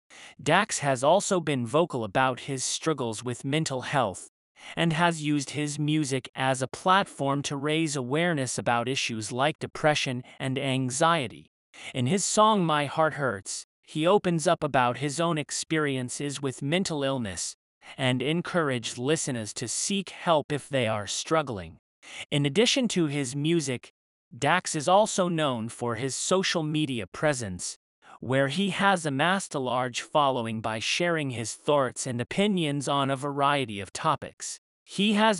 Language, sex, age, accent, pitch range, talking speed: English, male, 30-49, American, 130-165 Hz, 150 wpm